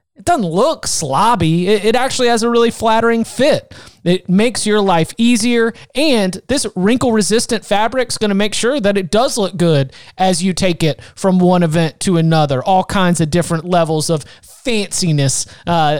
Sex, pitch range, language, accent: male, 170-230 Hz, English, American